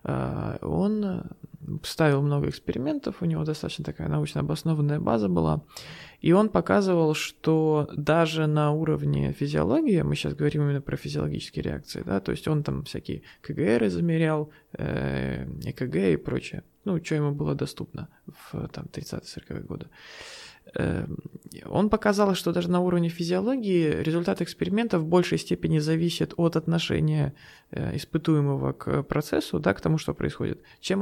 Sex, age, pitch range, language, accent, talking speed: male, 20-39, 140-165 Hz, Russian, native, 135 wpm